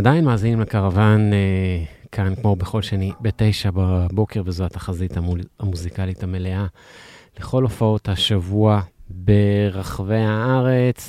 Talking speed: 105 wpm